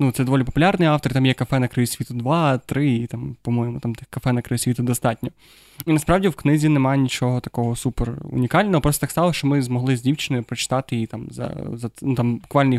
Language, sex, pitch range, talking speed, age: Ukrainian, male, 125-145 Hz, 190 wpm, 20-39